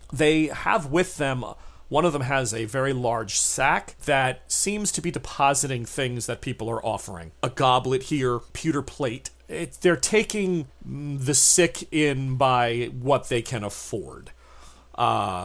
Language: English